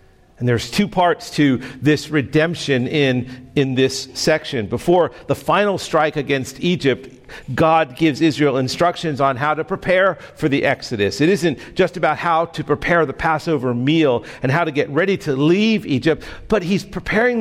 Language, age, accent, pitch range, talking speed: English, 50-69, American, 120-175 Hz, 170 wpm